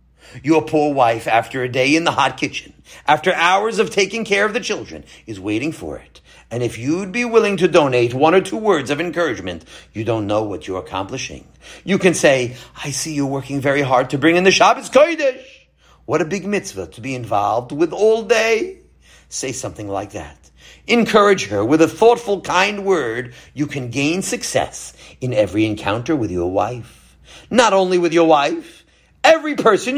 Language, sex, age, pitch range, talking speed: English, male, 50-69, 125-200 Hz, 190 wpm